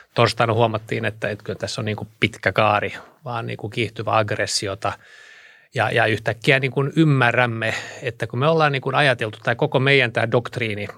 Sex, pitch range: male, 105-125 Hz